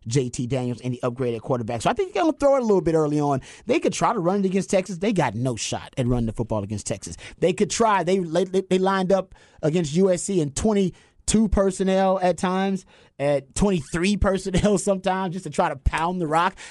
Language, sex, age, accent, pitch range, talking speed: English, male, 30-49, American, 145-190 Hz, 225 wpm